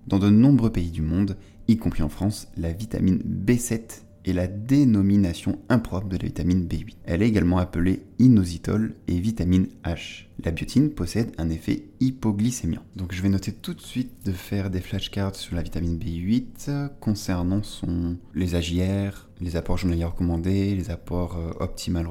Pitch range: 85-105 Hz